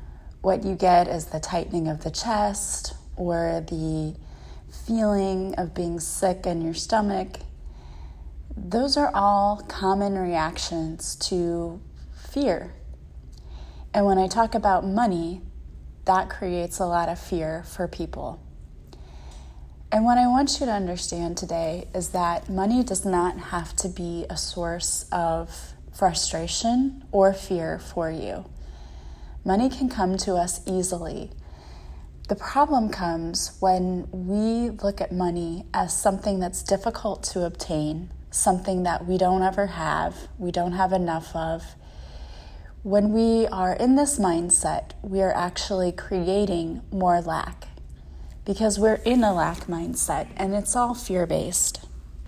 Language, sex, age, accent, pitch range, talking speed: English, female, 20-39, American, 155-195 Hz, 135 wpm